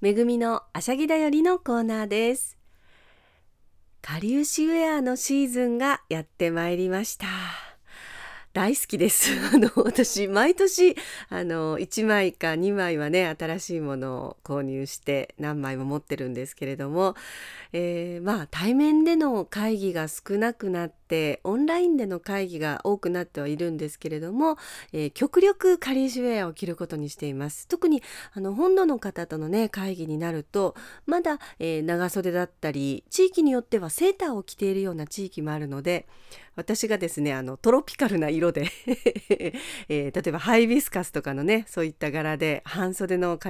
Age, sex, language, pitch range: 40-59, female, Japanese, 160-240 Hz